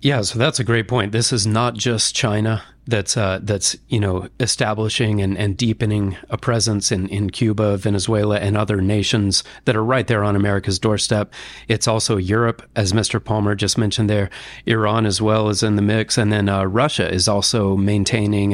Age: 40-59